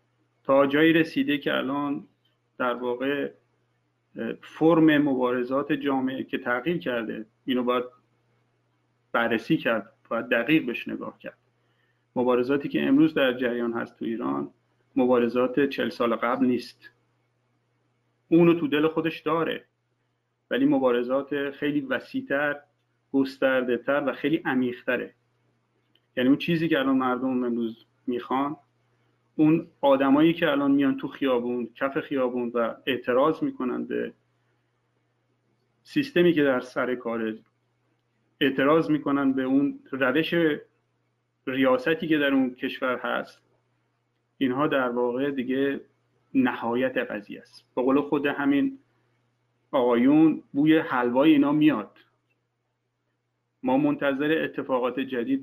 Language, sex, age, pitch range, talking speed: Persian, male, 40-59, 115-145 Hz, 115 wpm